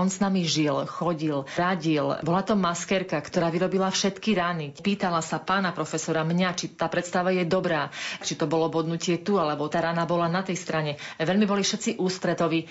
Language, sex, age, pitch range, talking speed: Slovak, female, 30-49, 160-185 Hz, 185 wpm